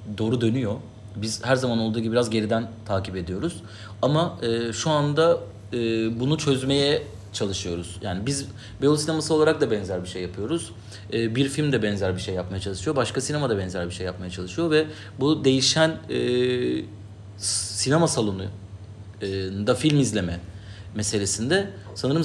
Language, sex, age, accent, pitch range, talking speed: Turkish, male, 40-59, native, 105-140 Hz, 150 wpm